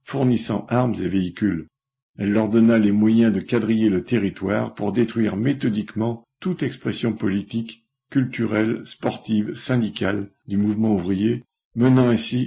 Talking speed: 130 wpm